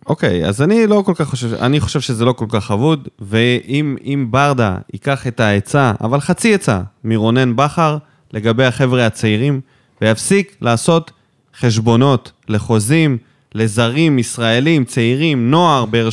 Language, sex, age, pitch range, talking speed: Hebrew, male, 20-39, 120-170 Hz, 140 wpm